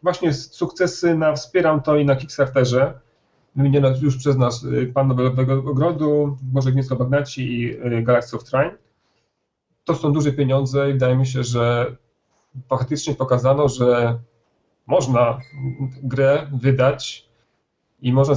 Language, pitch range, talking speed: Polish, 125-145 Hz, 125 wpm